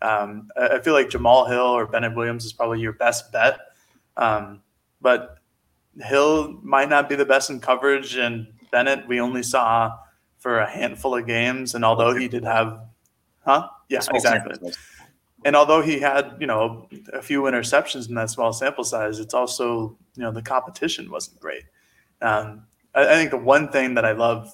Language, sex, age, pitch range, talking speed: English, male, 20-39, 110-130 Hz, 180 wpm